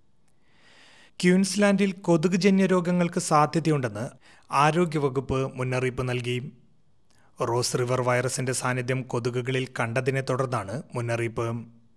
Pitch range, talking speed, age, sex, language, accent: 125-150 Hz, 80 wpm, 30-49, male, Malayalam, native